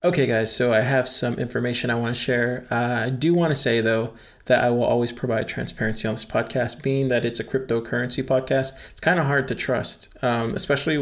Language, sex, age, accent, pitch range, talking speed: English, male, 20-39, American, 120-135 Hz, 225 wpm